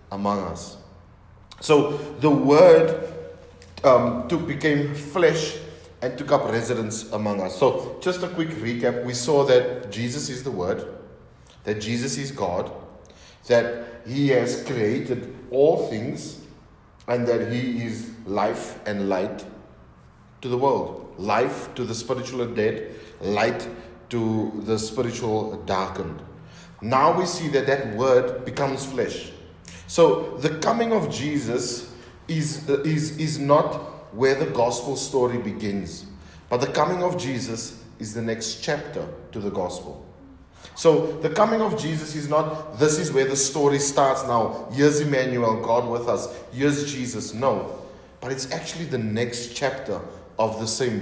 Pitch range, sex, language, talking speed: 115-150 Hz, male, English, 145 wpm